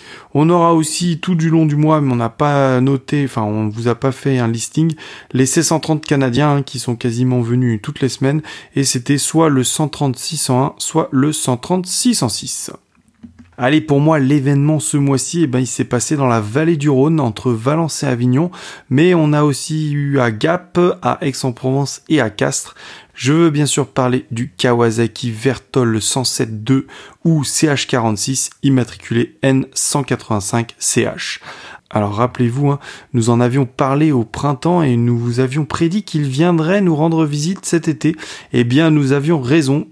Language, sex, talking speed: French, male, 165 wpm